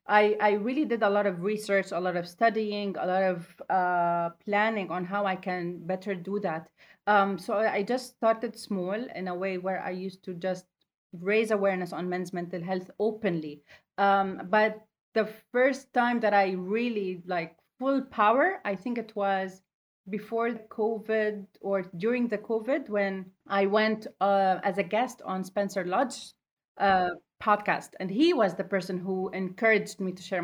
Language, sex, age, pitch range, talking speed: English, female, 30-49, 185-225 Hz, 175 wpm